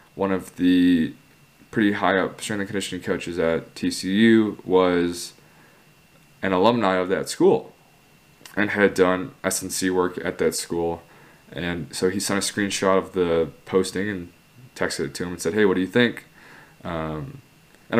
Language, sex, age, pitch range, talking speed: English, male, 20-39, 85-110 Hz, 165 wpm